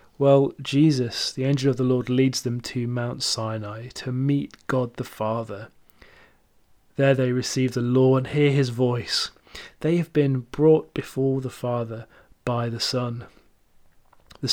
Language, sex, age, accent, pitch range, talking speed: English, male, 30-49, British, 125-150 Hz, 155 wpm